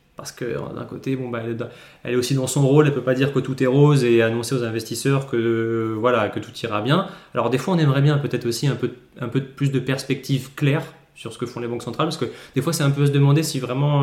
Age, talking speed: 20-39, 270 wpm